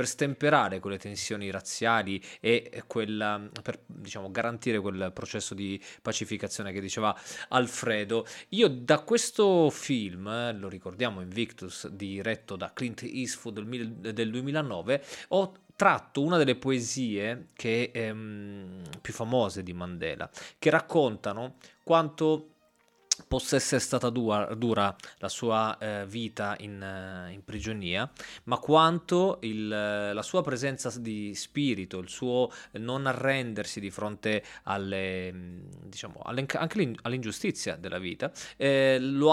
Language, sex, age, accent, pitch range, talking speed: Italian, male, 20-39, native, 100-130 Hz, 120 wpm